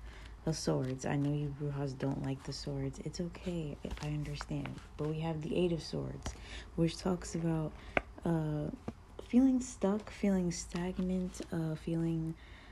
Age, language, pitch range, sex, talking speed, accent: 20-39, English, 145-180 Hz, female, 145 wpm, American